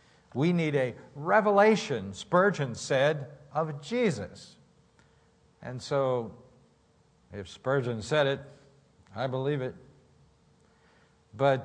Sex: male